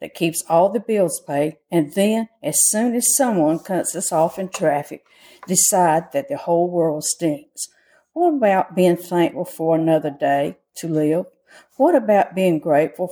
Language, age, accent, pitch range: English, 60-79, American, 160-195 Hz